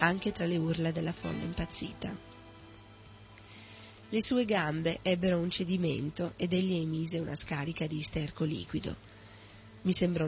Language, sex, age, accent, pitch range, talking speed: Italian, female, 40-59, native, 110-175 Hz, 135 wpm